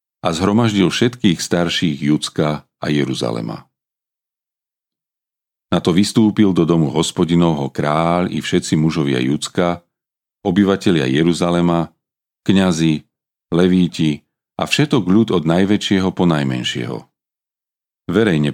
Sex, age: male, 40-59